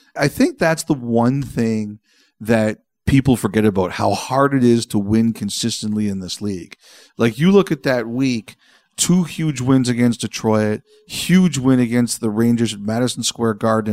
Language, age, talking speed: English, 40-59, 170 wpm